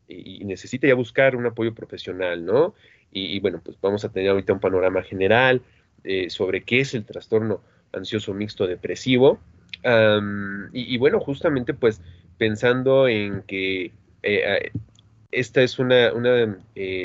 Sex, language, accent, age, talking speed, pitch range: male, Spanish, Mexican, 30-49, 135 wpm, 95-120 Hz